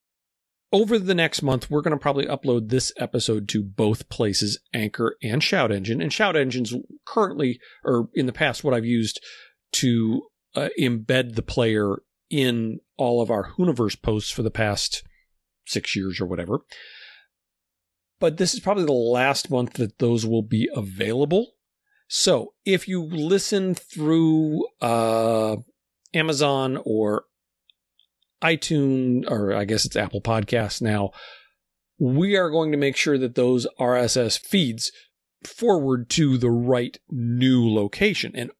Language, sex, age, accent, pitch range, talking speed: English, male, 40-59, American, 115-155 Hz, 145 wpm